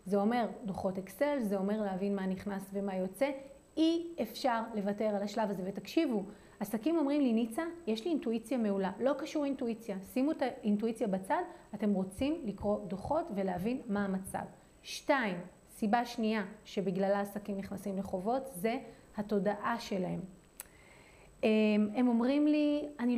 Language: Hebrew